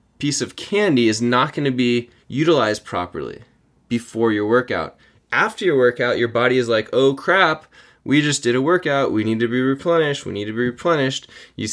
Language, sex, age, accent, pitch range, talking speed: English, male, 20-39, American, 110-135 Hz, 195 wpm